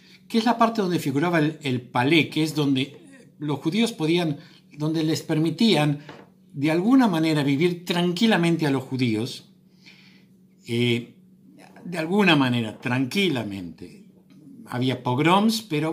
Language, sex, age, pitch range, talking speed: Spanish, male, 60-79, 125-185 Hz, 130 wpm